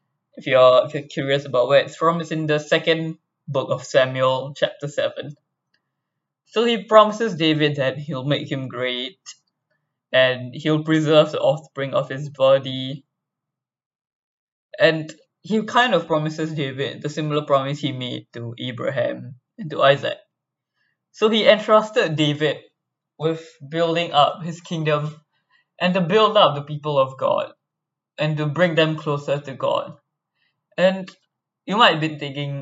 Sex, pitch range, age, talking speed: male, 140-170 Hz, 10-29, 145 wpm